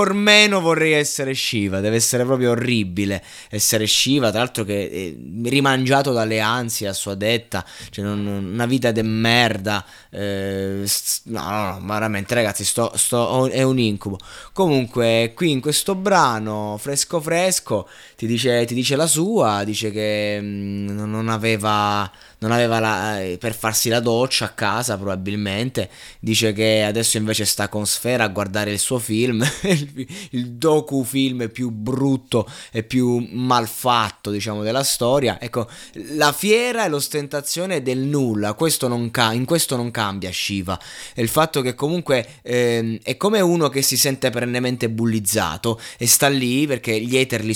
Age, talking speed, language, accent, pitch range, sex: 20-39, 150 wpm, Italian, native, 105-135 Hz, male